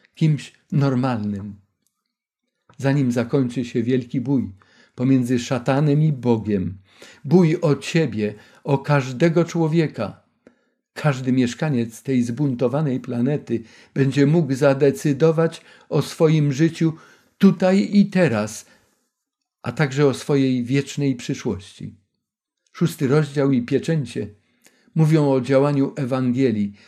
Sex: male